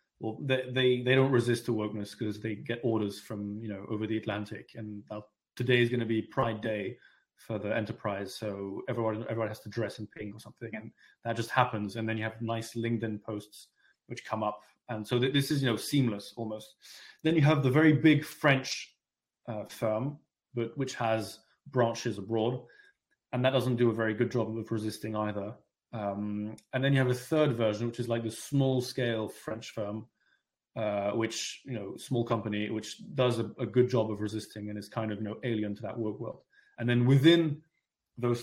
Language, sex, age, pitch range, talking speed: English, male, 30-49, 110-125 Hz, 205 wpm